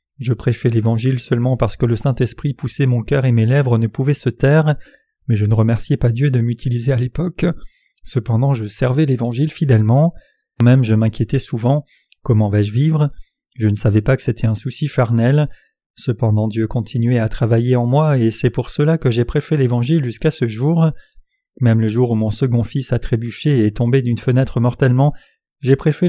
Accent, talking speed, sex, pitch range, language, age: French, 195 wpm, male, 115-140 Hz, French, 30-49